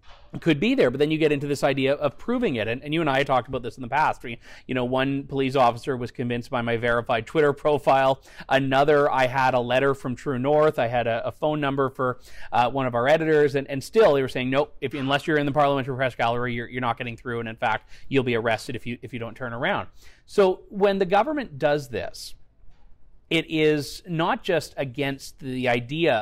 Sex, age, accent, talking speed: male, 30-49, American, 240 wpm